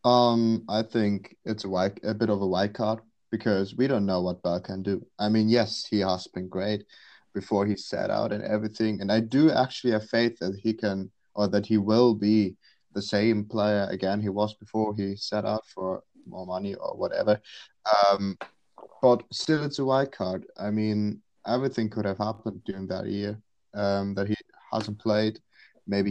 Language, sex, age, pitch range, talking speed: English, male, 20-39, 100-115 Hz, 195 wpm